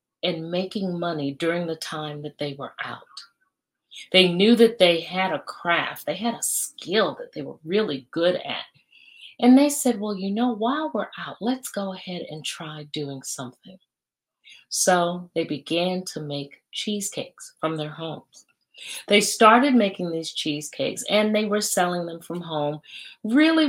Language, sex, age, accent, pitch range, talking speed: English, female, 40-59, American, 155-205 Hz, 165 wpm